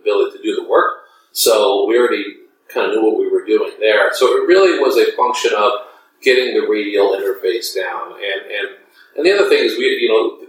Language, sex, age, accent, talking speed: English, male, 40-59, American, 215 wpm